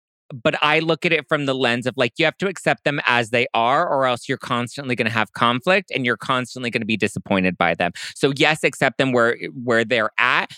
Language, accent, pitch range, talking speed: English, American, 110-135 Hz, 245 wpm